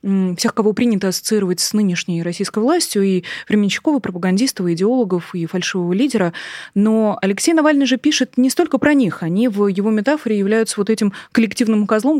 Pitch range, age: 190-235 Hz, 20-39